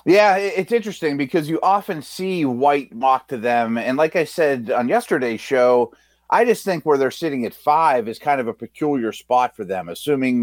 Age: 30-49